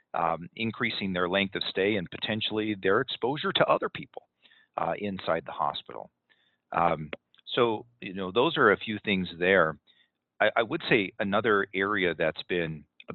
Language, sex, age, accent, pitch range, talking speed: English, male, 40-59, American, 85-110 Hz, 165 wpm